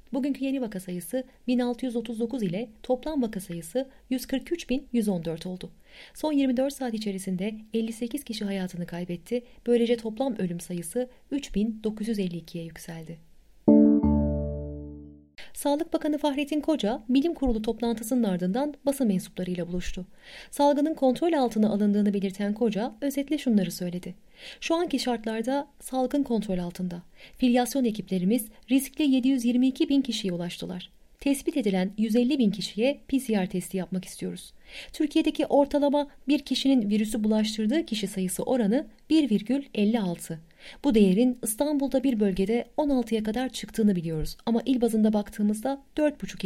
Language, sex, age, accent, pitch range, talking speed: Turkish, female, 30-49, native, 185-270 Hz, 120 wpm